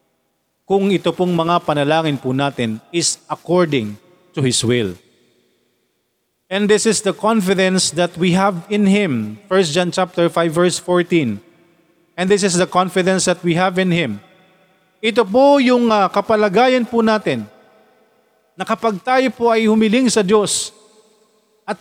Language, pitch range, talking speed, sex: Filipino, 165-225 Hz, 150 wpm, male